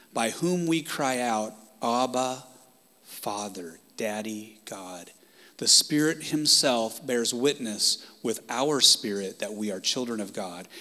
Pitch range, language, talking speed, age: 110-155 Hz, English, 130 wpm, 30-49